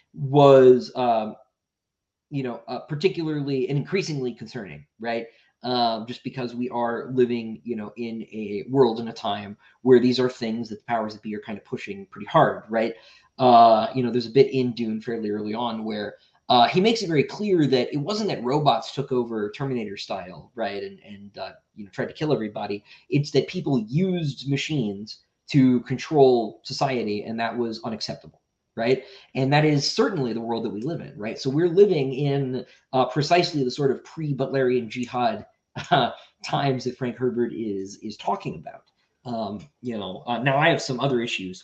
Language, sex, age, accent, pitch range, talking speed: English, male, 20-39, American, 110-140 Hz, 190 wpm